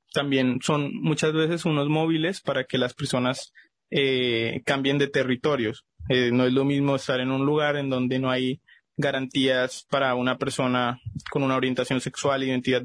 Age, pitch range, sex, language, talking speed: 20-39, 130-150 Hz, male, Spanish, 165 wpm